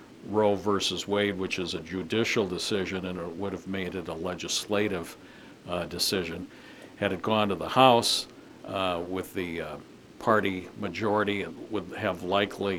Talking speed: 160 wpm